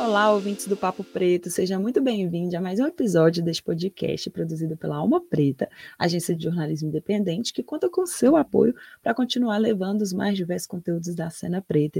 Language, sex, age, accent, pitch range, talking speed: Portuguese, female, 20-39, Brazilian, 170-235 Hz, 190 wpm